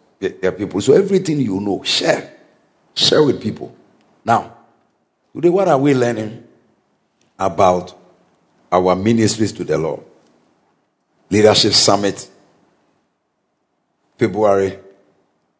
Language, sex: English, male